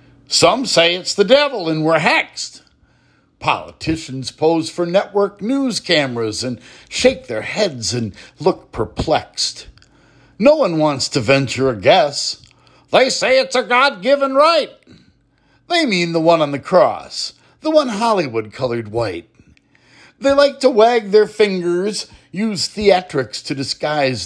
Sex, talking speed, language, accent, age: male, 140 wpm, English, American, 60-79